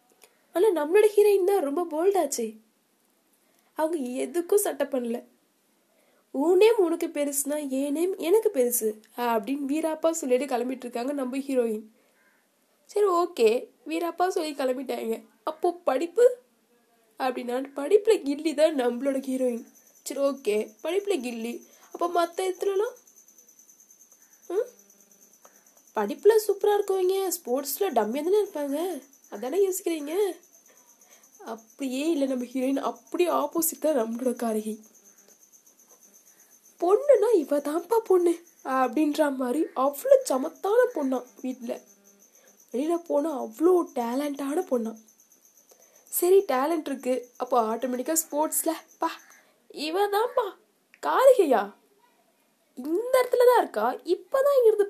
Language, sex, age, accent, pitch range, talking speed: Tamil, female, 20-39, native, 255-360 Hz, 95 wpm